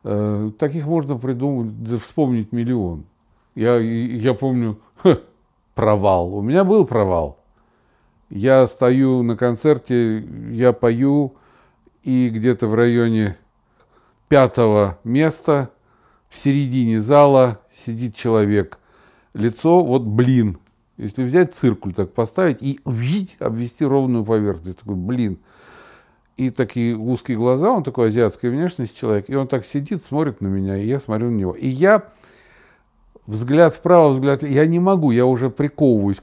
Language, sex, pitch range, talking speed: Russian, male, 110-140 Hz, 130 wpm